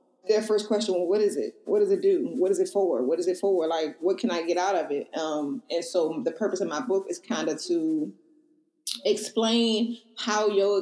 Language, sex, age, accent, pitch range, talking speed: English, female, 20-39, American, 170-250 Hz, 235 wpm